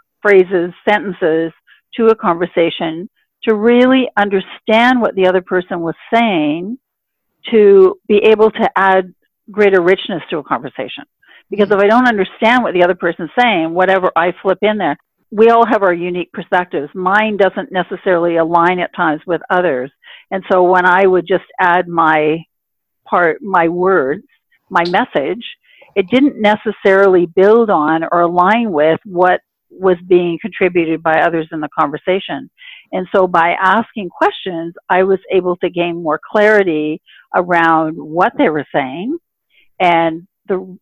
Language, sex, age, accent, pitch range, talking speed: English, female, 50-69, American, 170-210 Hz, 150 wpm